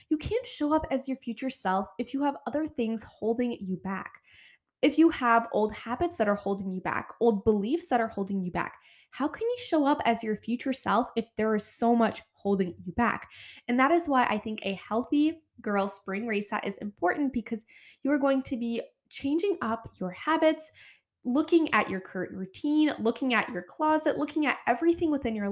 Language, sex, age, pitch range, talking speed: English, female, 10-29, 195-290 Hz, 205 wpm